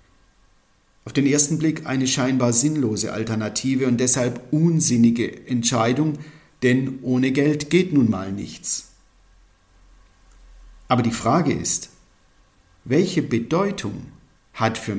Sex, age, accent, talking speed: male, 50-69, German, 110 wpm